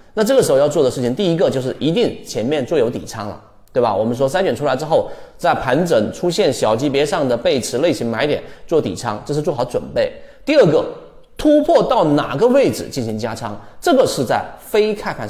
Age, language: 30-49, Chinese